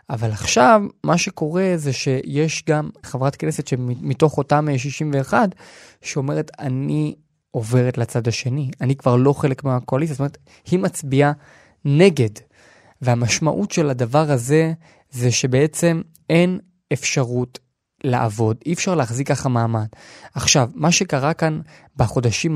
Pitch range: 135-180 Hz